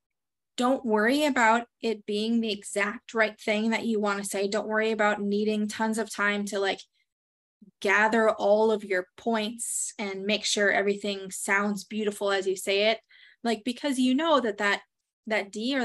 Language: English